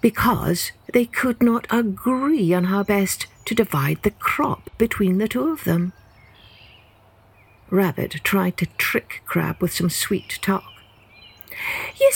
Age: 60-79